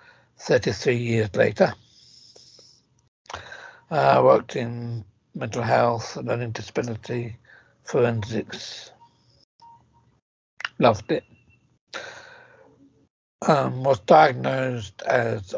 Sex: male